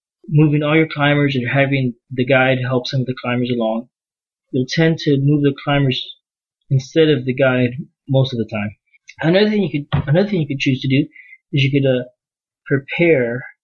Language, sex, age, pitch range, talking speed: English, male, 30-49, 125-155 Hz, 195 wpm